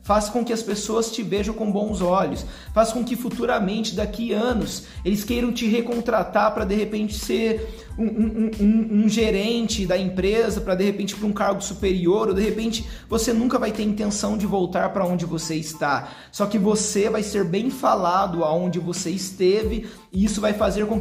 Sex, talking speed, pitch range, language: male, 195 wpm, 190-225 Hz, Portuguese